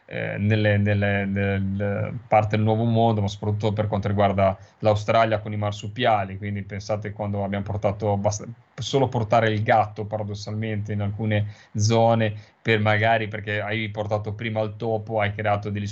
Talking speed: 160 wpm